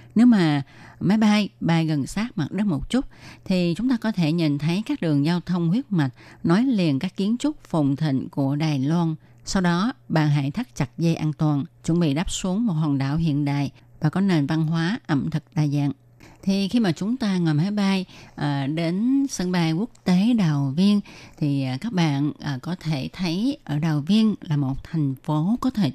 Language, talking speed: Vietnamese, 210 wpm